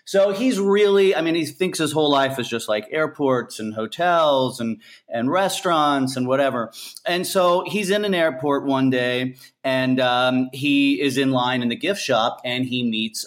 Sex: male